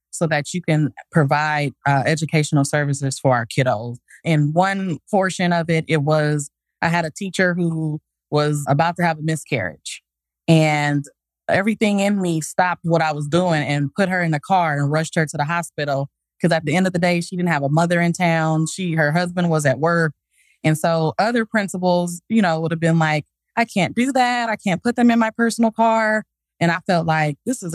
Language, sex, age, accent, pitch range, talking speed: English, female, 20-39, American, 150-185 Hz, 210 wpm